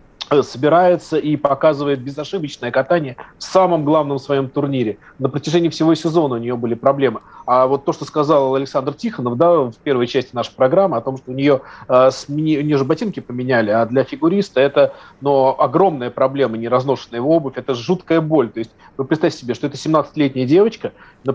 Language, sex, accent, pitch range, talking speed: Russian, male, native, 130-165 Hz, 175 wpm